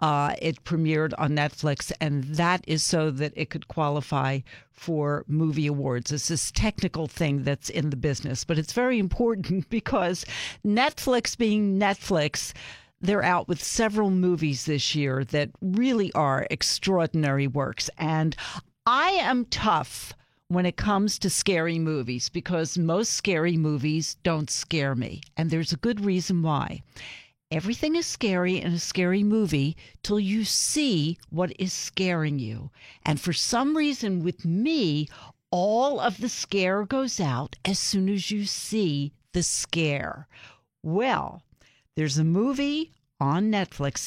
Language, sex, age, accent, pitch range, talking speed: English, female, 50-69, American, 145-190 Hz, 145 wpm